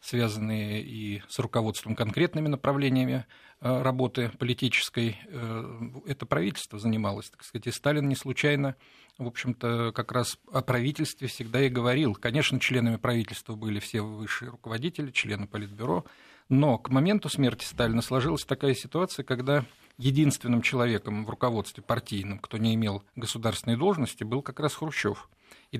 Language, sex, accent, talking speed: Russian, male, native, 135 wpm